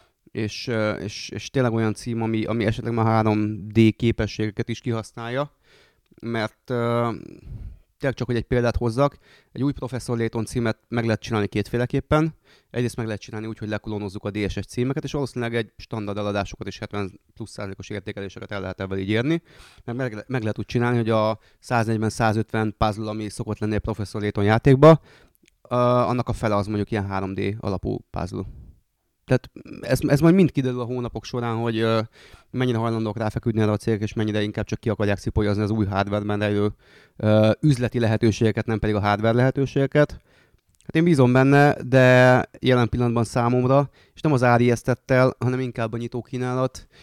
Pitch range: 105-125 Hz